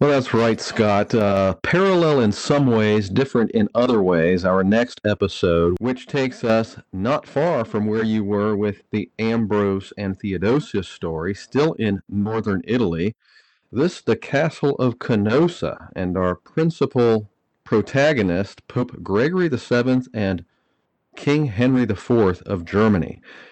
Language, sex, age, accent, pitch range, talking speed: English, male, 40-59, American, 100-135 Hz, 140 wpm